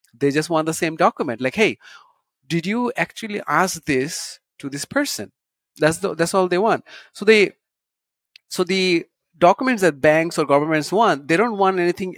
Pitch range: 140-185 Hz